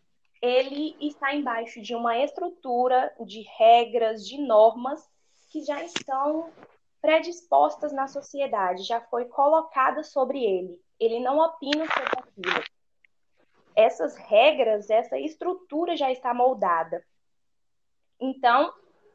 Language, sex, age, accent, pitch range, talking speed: Portuguese, female, 10-29, Brazilian, 235-300 Hz, 105 wpm